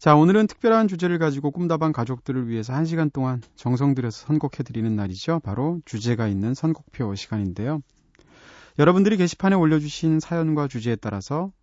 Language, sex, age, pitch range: Korean, male, 30-49, 110-155 Hz